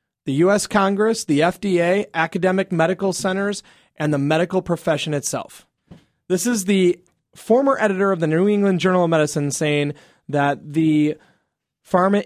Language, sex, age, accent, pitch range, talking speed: English, male, 30-49, American, 140-180 Hz, 140 wpm